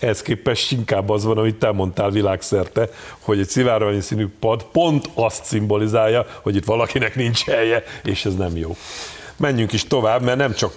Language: Hungarian